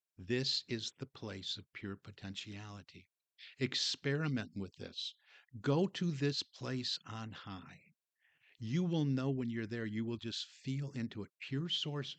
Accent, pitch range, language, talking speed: American, 110-140 Hz, English, 150 wpm